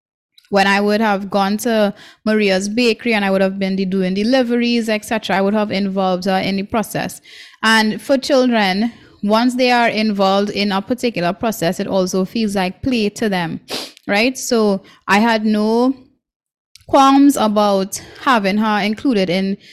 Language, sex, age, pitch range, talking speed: English, female, 20-39, 195-235 Hz, 165 wpm